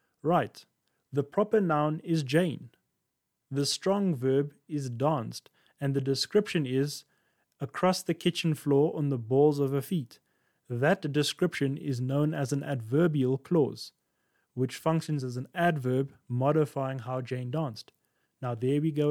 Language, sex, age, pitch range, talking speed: English, male, 30-49, 135-170 Hz, 145 wpm